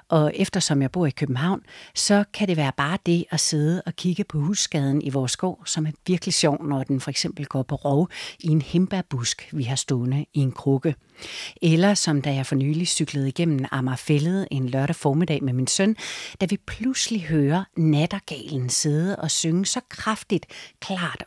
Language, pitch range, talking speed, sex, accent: Danish, 140-180 Hz, 190 wpm, female, native